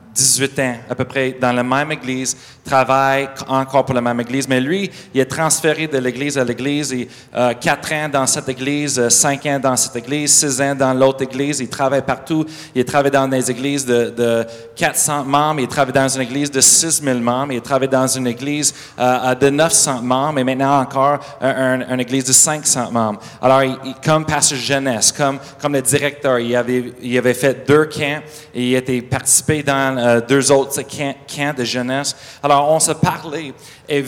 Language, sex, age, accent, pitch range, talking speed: French, male, 30-49, Canadian, 130-150 Hz, 205 wpm